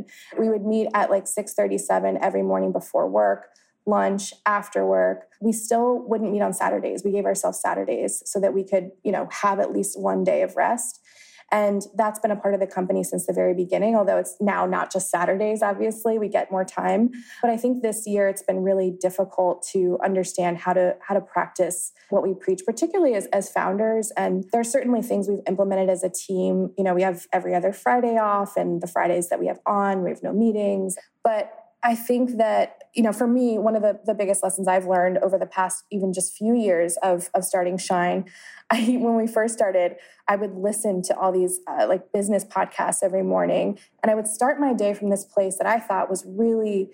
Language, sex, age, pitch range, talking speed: English, female, 20-39, 185-220 Hz, 215 wpm